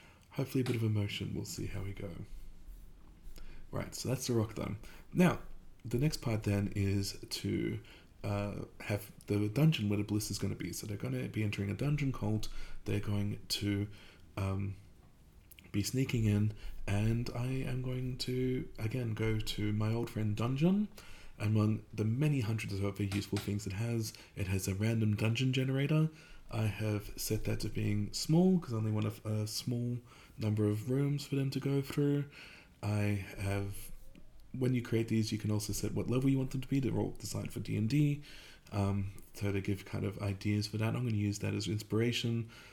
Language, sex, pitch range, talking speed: English, male, 100-125 Hz, 195 wpm